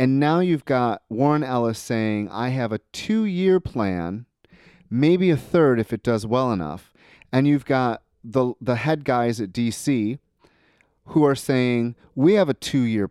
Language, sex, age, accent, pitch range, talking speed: English, male, 30-49, American, 100-140 Hz, 165 wpm